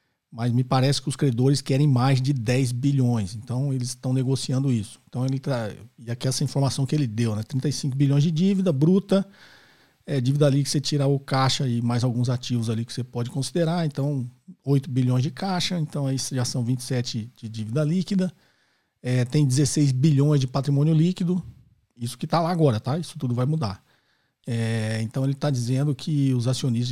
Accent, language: Brazilian, Portuguese